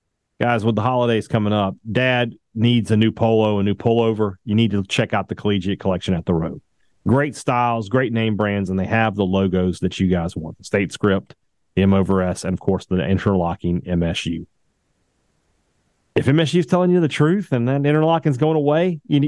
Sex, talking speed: male, 205 wpm